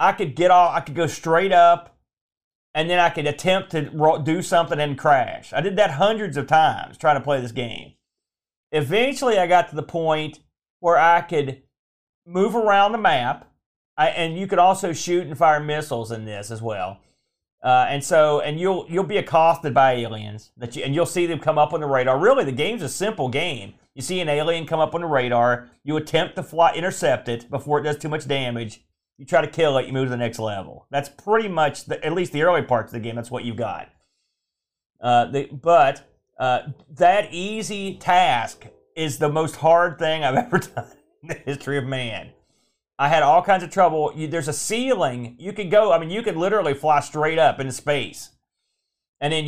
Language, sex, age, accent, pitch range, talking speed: English, male, 40-59, American, 135-175 Hz, 210 wpm